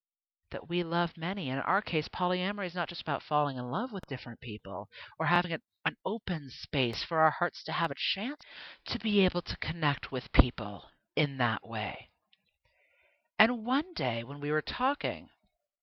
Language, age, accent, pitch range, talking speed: English, 50-69, American, 125-195 Hz, 180 wpm